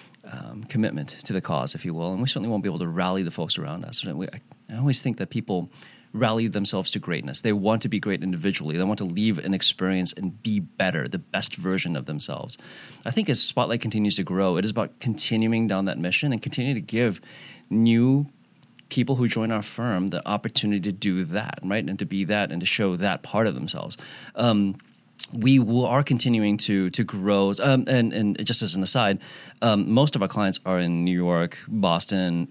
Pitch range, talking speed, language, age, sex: 95-120 Hz, 210 wpm, English, 30-49, male